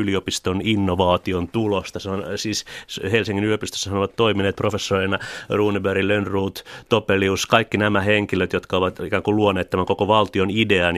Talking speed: 140 wpm